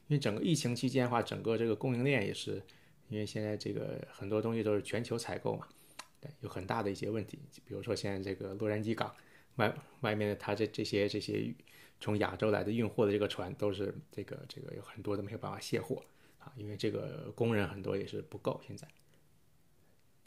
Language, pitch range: Chinese, 105-135 Hz